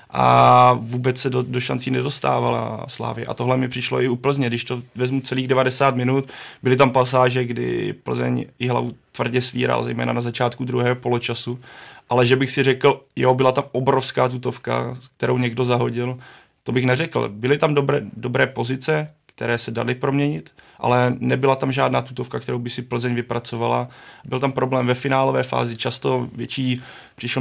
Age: 30-49